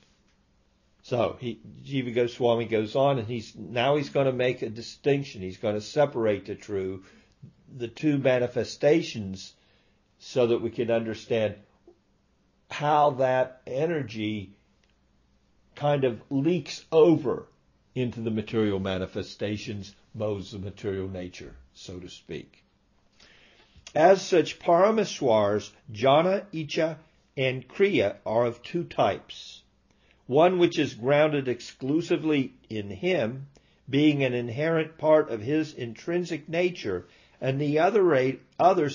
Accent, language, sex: American, English, male